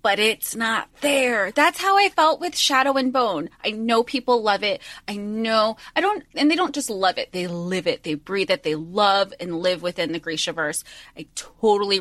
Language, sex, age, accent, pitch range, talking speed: English, female, 20-39, American, 195-290 Hz, 215 wpm